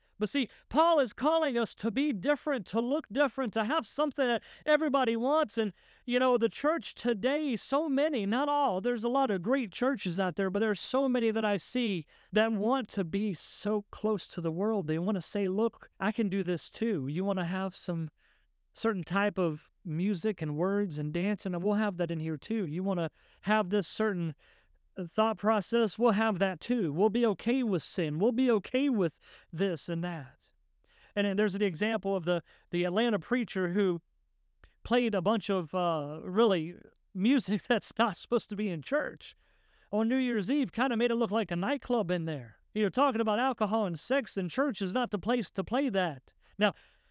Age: 40-59